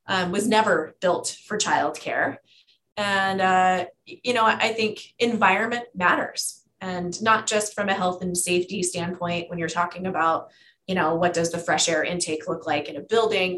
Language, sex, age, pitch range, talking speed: English, female, 20-39, 175-215 Hz, 175 wpm